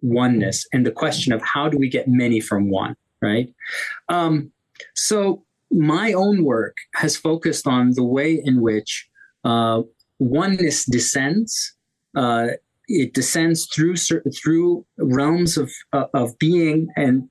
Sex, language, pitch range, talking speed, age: male, English, 120-165 Hz, 140 wpm, 30-49